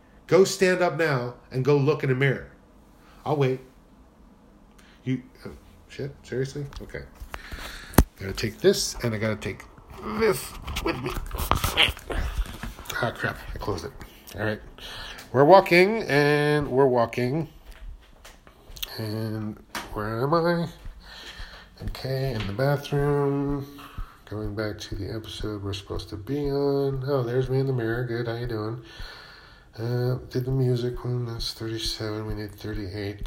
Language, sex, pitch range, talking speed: English, male, 100-140 Hz, 140 wpm